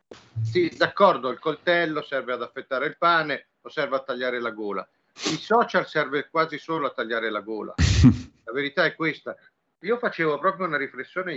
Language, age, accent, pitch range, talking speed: Italian, 50-69, native, 125-175 Hz, 175 wpm